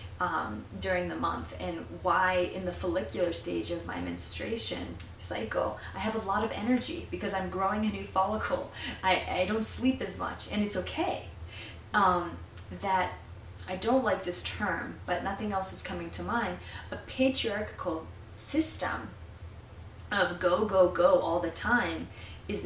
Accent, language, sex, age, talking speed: American, English, female, 20-39, 160 wpm